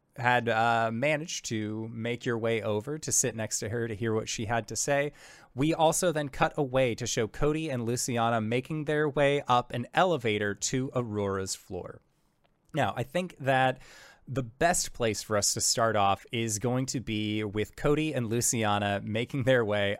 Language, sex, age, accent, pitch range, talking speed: English, male, 20-39, American, 120-165 Hz, 185 wpm